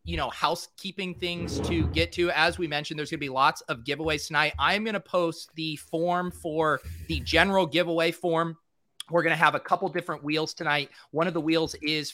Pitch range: 135-170 Hz